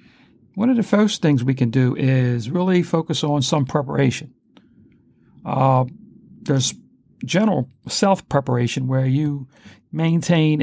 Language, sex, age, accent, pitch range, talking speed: English, male, 60-79, American, 125-150 Hz, 120 wpm